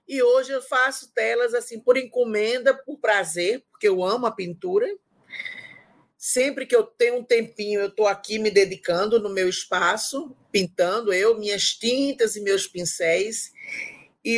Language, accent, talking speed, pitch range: Portuguese, Brazilian, 155 wpm, 195-255 Hz